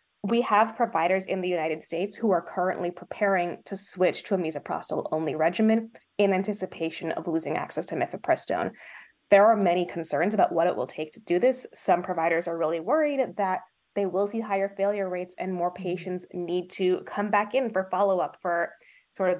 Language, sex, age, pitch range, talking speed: English, female, 20-39, 175-220 Hz, 190 wpm